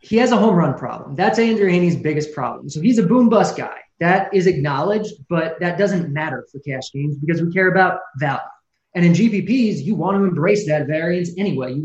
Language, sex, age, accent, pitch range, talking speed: English, male, 20-39, American, 145-190 Hz, 215 wpm